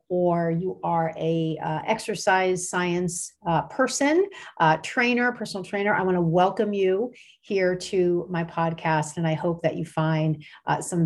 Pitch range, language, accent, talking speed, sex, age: 160-200 Hz, English, American, 165 wpm, female, 40-59